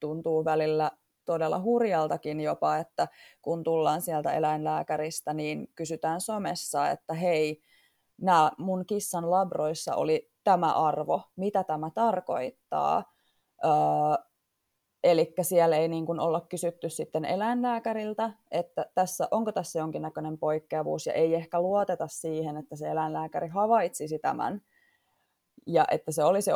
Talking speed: 120 wpm